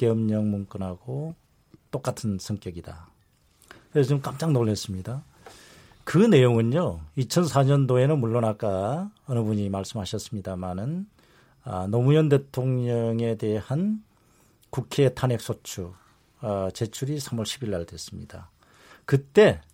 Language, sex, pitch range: Korean, male, 100-140 Hz